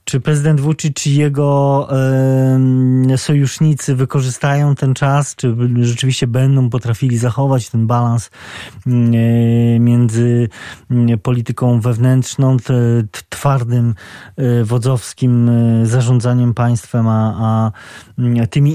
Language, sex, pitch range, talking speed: Polish, male, 115-135 Hz, 80 wpm